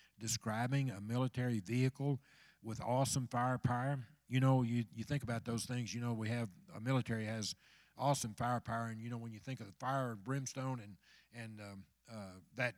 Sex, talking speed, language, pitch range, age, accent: male, 190 wpm, English, 115-135 Hz, 50-69, American